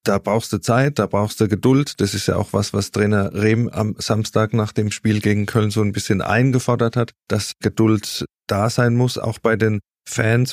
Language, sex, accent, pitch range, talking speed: German, male, German, 105-120 Hz, 210 wpm